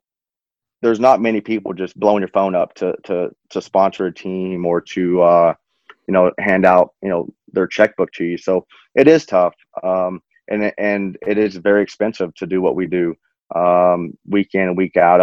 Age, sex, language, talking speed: 30-49, male, English, 195 wpm